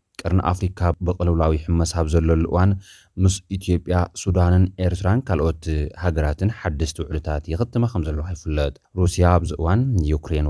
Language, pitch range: Amharic, 80-95 Hz